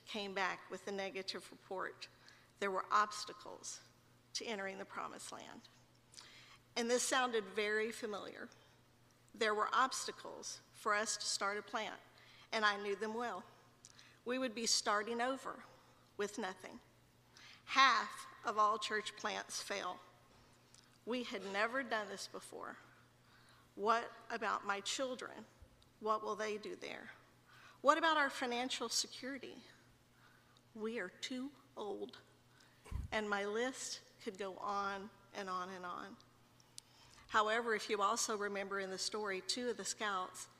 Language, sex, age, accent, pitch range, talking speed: English, female, 50-69, American, 200-235 Hz, 135 wpm